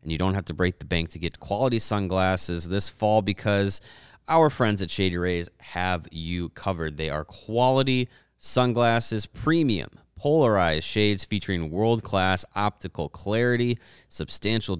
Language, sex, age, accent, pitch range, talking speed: English, male, 30-49, American, 85-110 Hz, 140 wpm